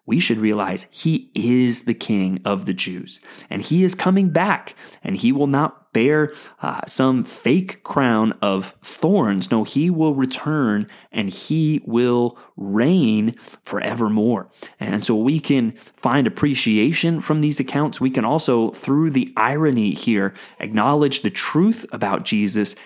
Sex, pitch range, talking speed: male, 110-145 Hz, 145 wpm